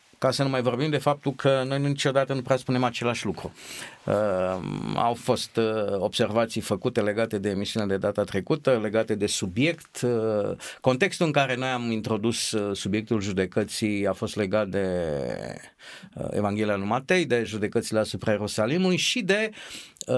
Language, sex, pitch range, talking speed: Romanian, male, 110-150 Hz, 145 wpm